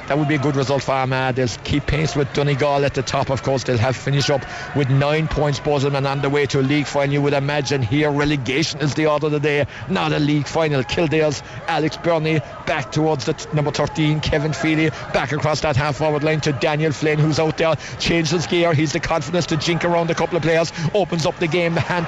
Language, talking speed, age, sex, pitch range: English, 235 wpm, 50-69, male, 150-235 Hz